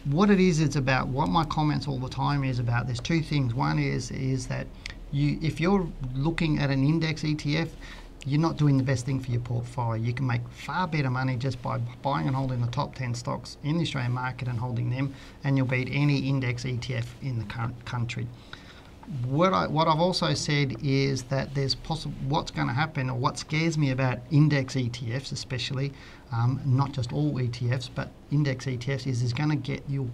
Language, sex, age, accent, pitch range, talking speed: English, male, 40-59, Australian, 125-150 Hz, 205 wpm